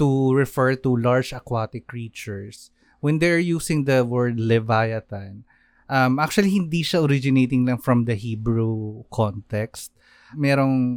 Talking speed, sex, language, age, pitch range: 125 wpm, male, Filipino, 20-39, 110-130 Hz